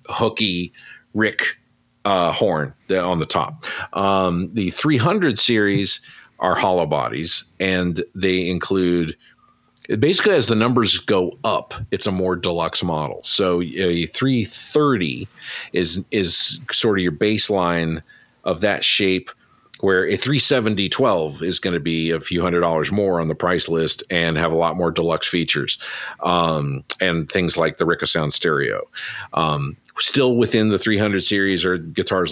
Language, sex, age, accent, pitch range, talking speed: English, male, 40-59, American, 80-100 Hz, 145 wpm